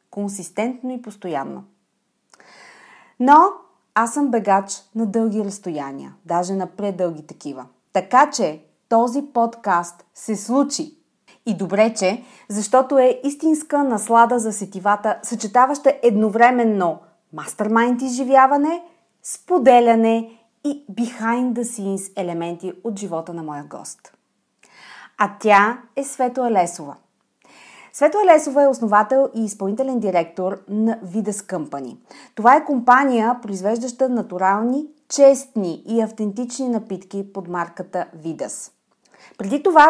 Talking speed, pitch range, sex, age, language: 110 wpm, 190-250 Hz, female, 30-49, Bulgarian